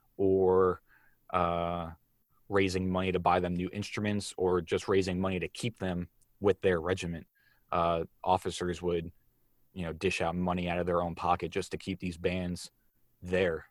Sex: male